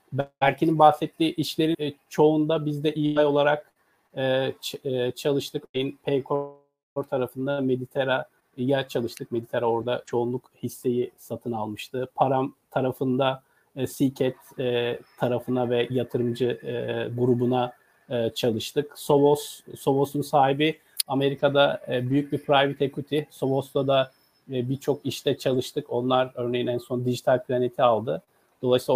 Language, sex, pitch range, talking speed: Turkish, male, 125-150 Hz, 120 wpm